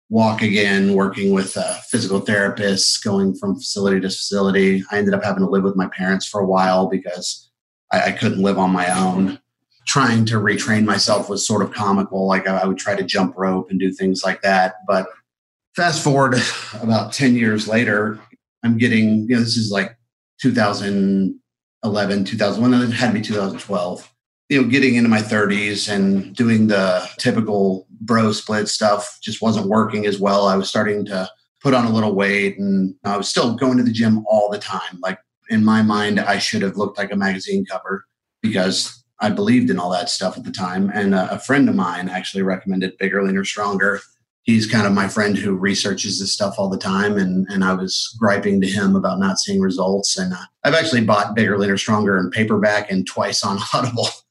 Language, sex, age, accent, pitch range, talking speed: English, male, 30-49, American, 95-110 Hz, 200 wpm